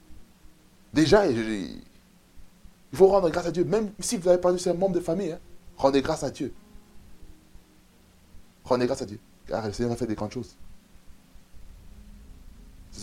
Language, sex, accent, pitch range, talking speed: French, male, French, 85-115 Hz, 160 wpm